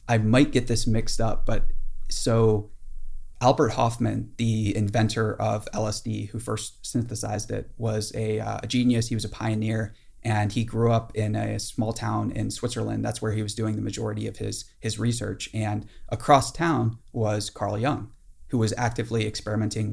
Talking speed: 175 wpm